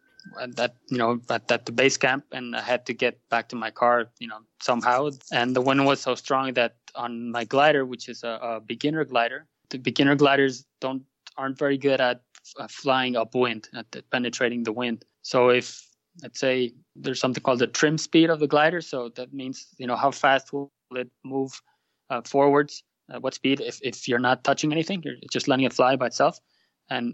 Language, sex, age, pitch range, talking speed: English, male, 20-39, 120-145 Hz, 210 wpm